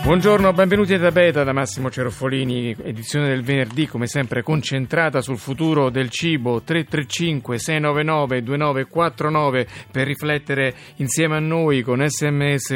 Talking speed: 125 wpm